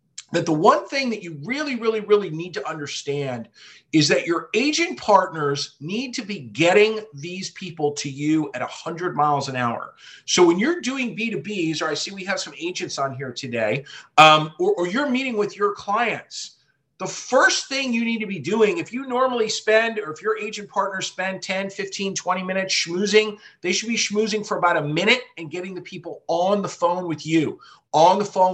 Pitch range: 155-215 Hz